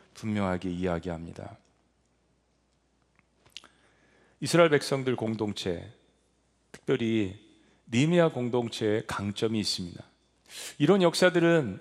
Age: 40-59